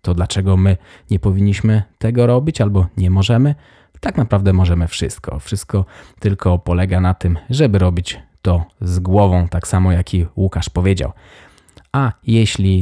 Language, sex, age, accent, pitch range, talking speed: Polish, male, 20-39, native, 90-100 Hz, 150 wpm